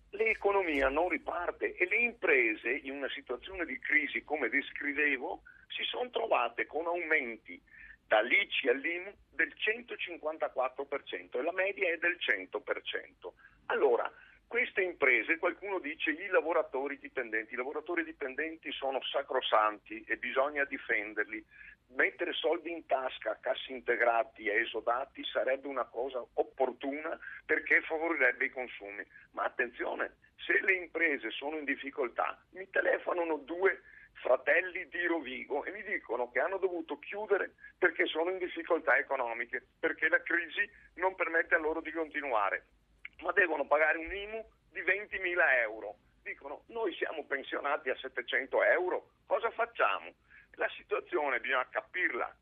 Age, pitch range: 50-69, 140-190 Hz